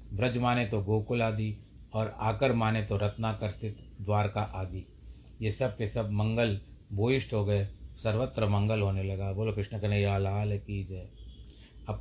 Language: Hindi